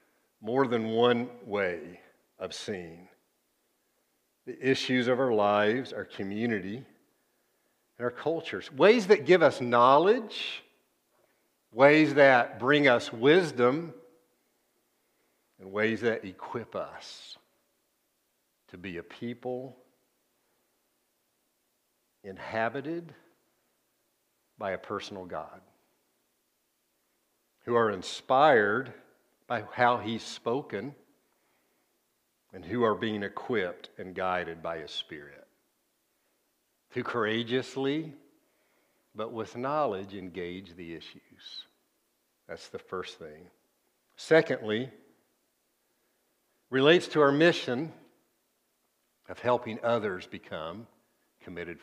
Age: 60-79